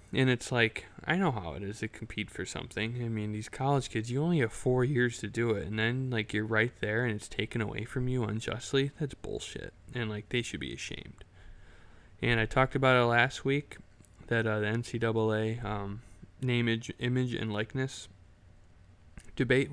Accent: American